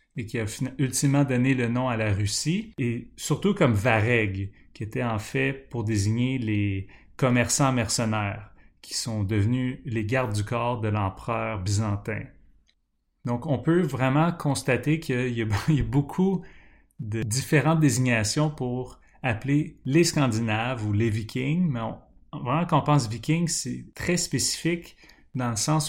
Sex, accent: male, Canadian